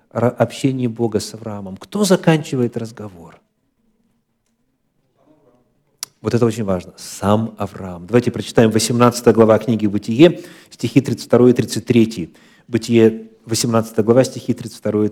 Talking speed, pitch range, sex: 115 wpm, 110-170 Hz, male